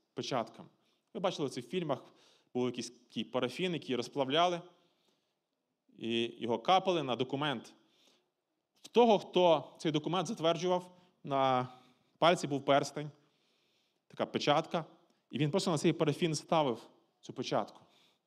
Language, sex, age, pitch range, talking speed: Ukrainian, male, 30-49, 130-185 Hz, 120 wpm